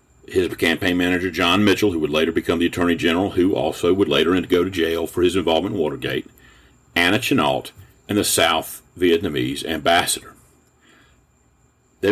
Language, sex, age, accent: English, male, 50-69, American